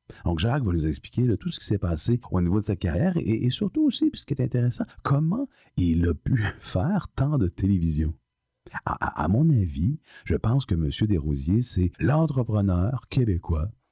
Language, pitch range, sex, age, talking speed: French, 80-120 Hz, male, 50-69, 190 wpm